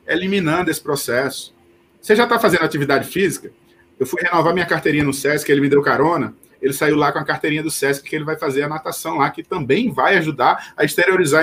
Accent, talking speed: Brazilian, 215 wpm